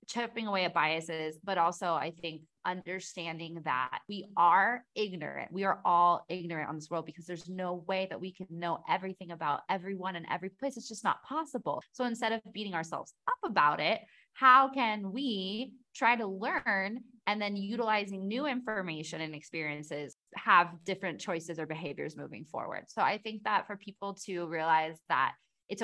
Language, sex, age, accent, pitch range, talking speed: English, female, 20-39, American, 165-210 Hz, 175 wpm